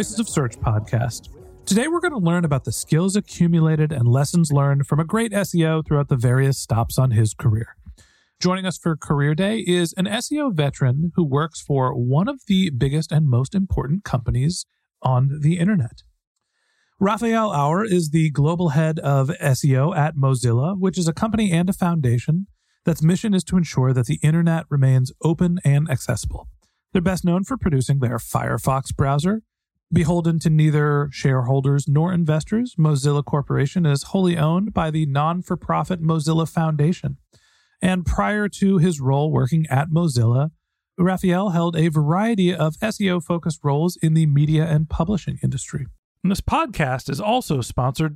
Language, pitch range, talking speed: English, 135-180 Hz, 160 wpm